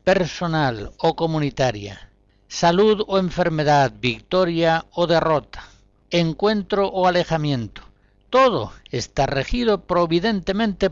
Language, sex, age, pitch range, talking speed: Spanish, male, 60-79, 105-175 Hz, 90 wpm